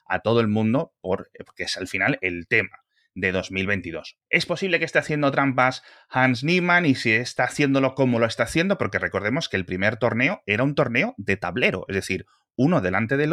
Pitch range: 95-130 Hz